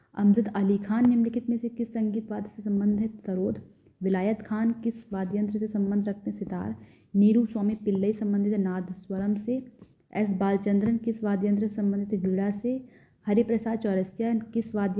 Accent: native